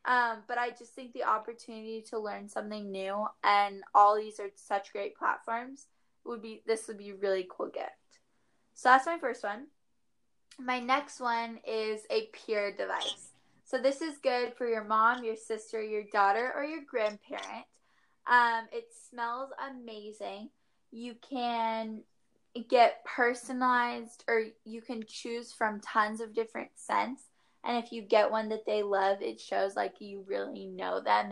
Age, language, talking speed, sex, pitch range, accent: 10-29, English, 165 wpm, female, 215-265 Hz, American